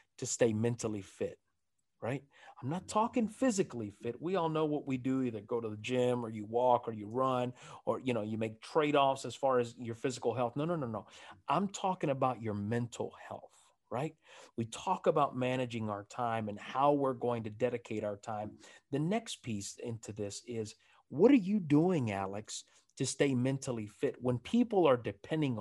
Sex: male